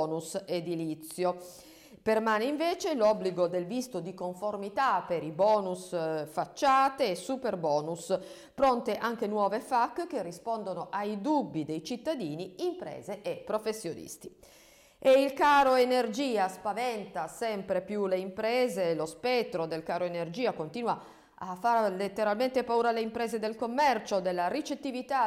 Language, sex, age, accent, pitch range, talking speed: Italian, female, 50-69, native, 185-260 Hz, 130 wpm